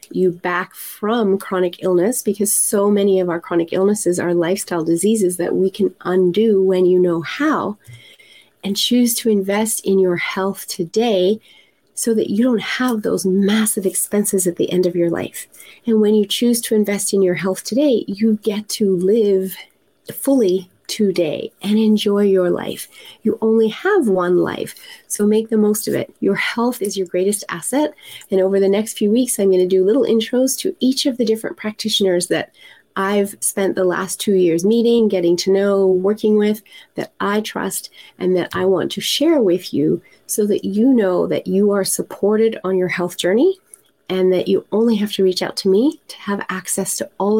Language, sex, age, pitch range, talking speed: English, female, 30-49, 185-220 Hz, 190 wpm